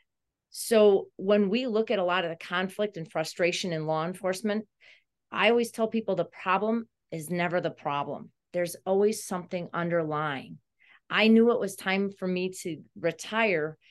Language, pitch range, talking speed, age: English, 165-205 Hz, 165 wpm, 40-59